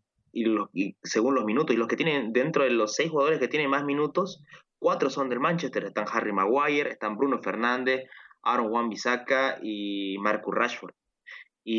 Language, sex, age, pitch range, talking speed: Spanish, male, 20-39, 105-140 Hz, 170 wpm